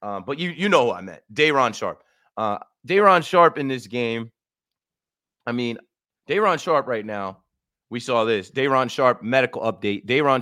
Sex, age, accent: male, 30-49, American